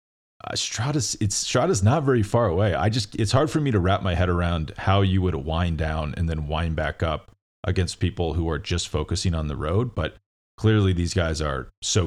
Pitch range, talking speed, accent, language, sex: 80-100 Hz, 220 wpm, American, English, male